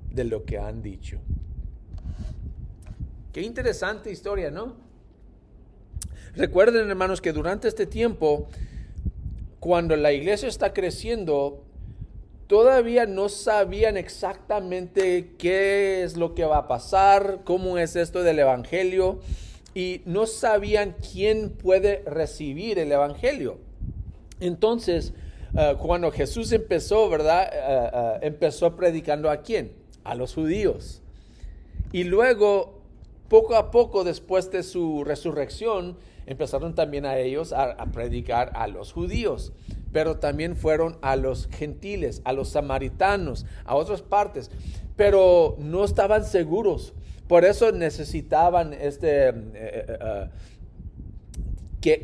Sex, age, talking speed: male, 40-59, 115 wpm